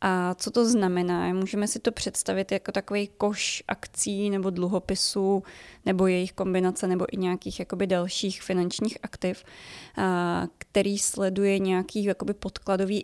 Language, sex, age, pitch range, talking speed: Czech, female, 20-39, 185-205 Hz, 130 wpm